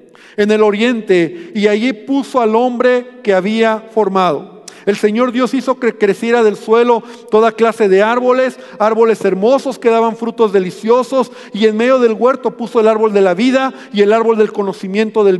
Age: 50-69